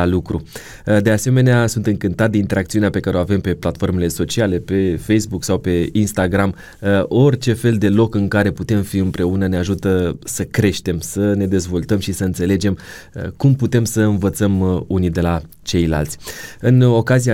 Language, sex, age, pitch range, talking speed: Romanian, male, 20-39, 95-115 Hz, 170 wpm